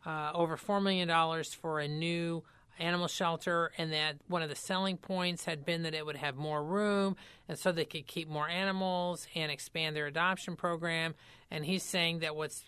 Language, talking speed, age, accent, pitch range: English, 195 wpm, 40-59, American, 150-175 Hz